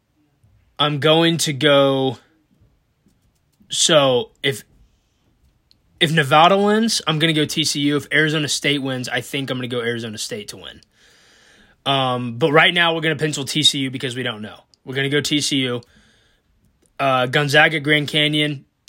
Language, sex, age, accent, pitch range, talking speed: English, male, 20-39, American, 130-150 Hz, 160 wpm